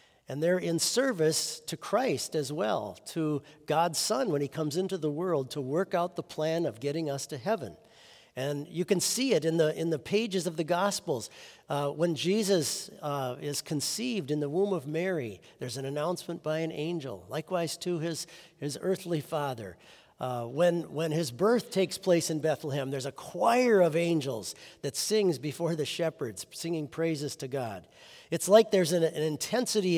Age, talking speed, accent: 50-69, 180 wpm, American